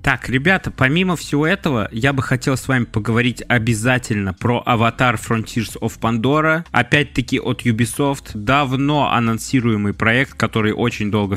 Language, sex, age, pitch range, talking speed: Russian, male, 20-39, 110-140 Hz, 135 wpm